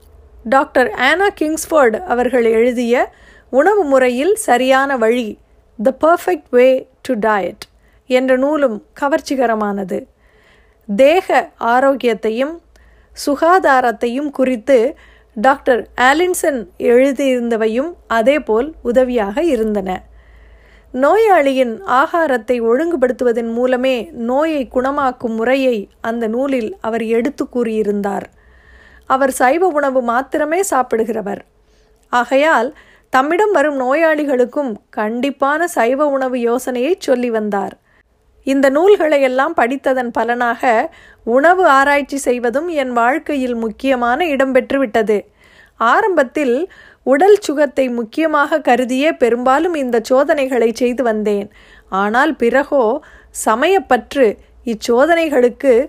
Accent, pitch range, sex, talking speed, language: native, 235-290 Hz, female, 85 wpm, Tamil